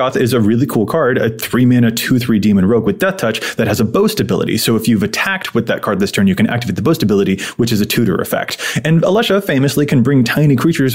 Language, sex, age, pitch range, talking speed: English, male, 20-39, 115-150 Hz, 245 wpm